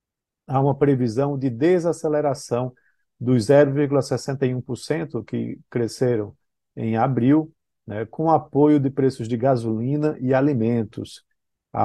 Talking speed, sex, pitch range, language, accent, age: 105 wpm, male, 120-150 Hz, Portuguese, Brazilian, 50-69